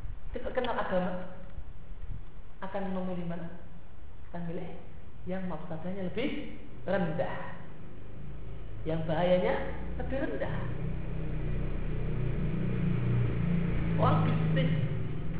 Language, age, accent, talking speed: Indonesian, 40-59, native, 60 wpm